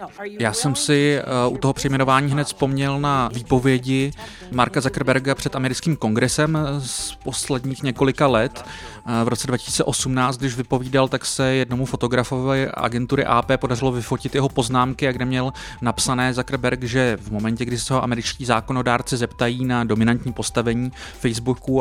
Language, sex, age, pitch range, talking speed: Czech, male, 30-49, 115-130 Hz, 140 wpm